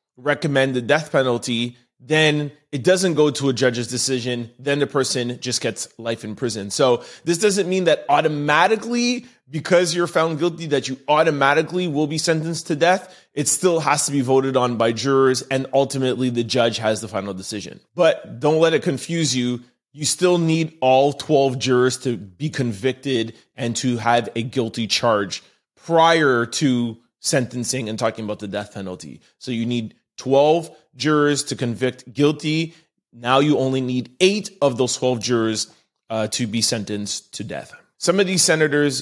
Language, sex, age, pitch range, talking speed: English, male, 30-49, 120-155 Hz, 170 wpm